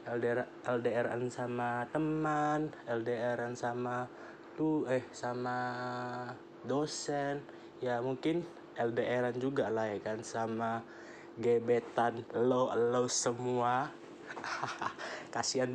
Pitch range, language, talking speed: 125-155 Hz, Indonesian, 90 wpm